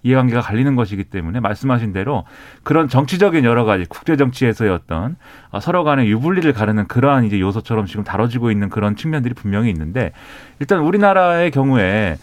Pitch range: 110-145 Hz